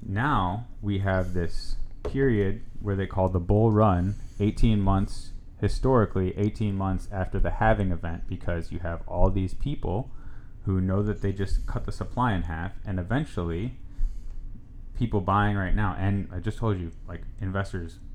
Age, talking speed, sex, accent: 30-49, 160 wpm, male, American